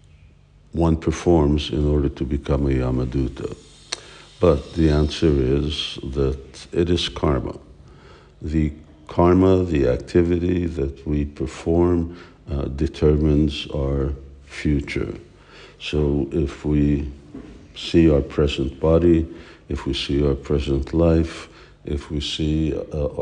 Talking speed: 115 wpm